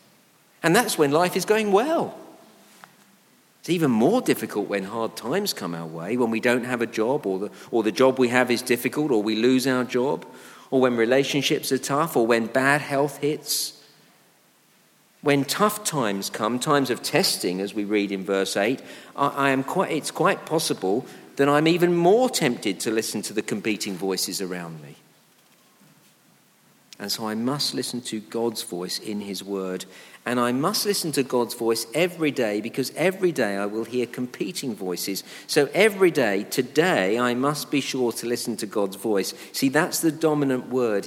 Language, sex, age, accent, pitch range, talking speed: English, male, 50-69, British, 115-150 Hz, 185 wpm